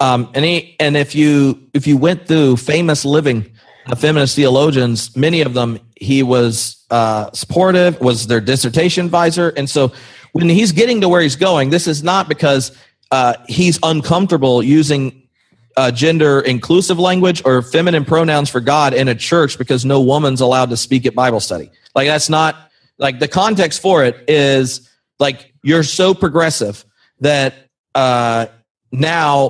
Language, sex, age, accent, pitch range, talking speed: English, male, 40-59, American, 130-170 Hz, 170 wpm